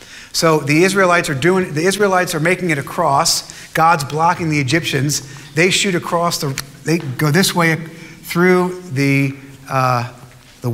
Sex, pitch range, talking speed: male, 135-170 Hz, 150 wpm